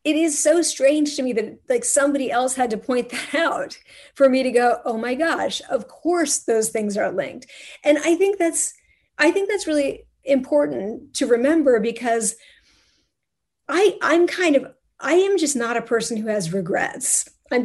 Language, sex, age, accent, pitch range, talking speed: English, female, 30-49, American, 235-290 Hz, 185 wpm